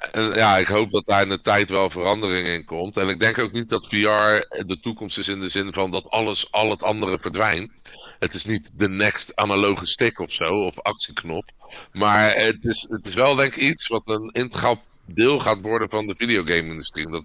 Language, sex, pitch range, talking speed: Dutch, male, 95-110 Hz, 215 wpm